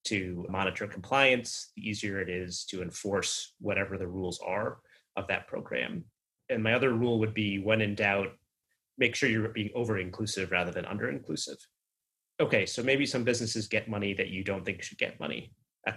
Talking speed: 180 wpm